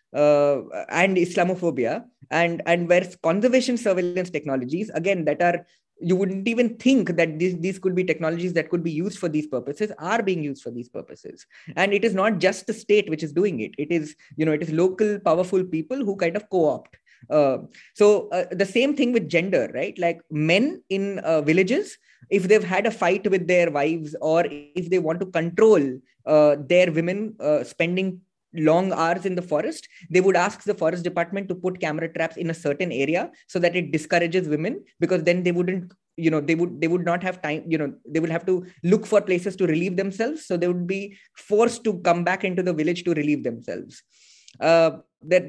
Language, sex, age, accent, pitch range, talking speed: English, female, 20-39, Indian, 165-195 Hz, 205 wpm